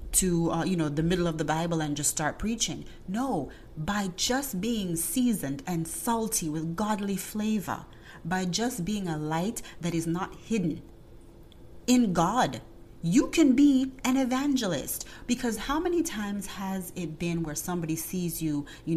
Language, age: English, 30-49